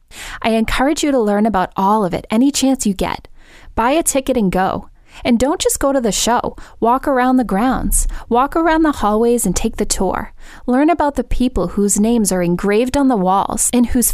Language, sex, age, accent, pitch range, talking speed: English, female, 20-39, American, 195-255 Hz, 210 wpm